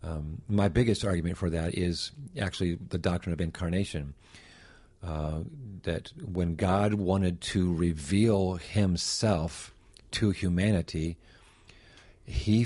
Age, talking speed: 50-69, 110 wpm